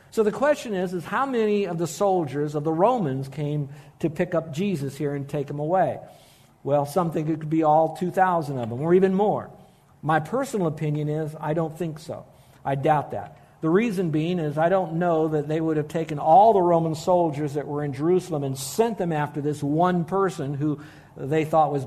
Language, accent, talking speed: English, American, 215 wpm